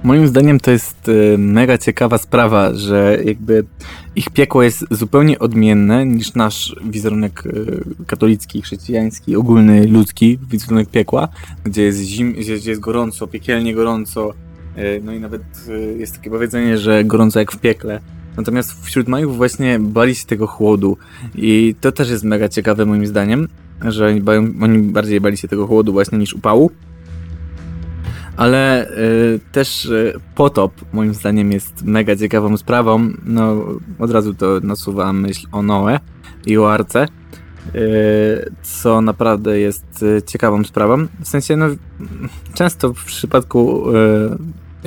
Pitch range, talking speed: 100-115 Hz, 140 wpm